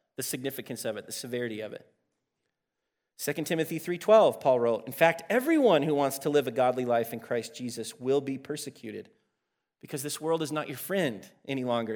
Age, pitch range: 30-49, 115-150 Hz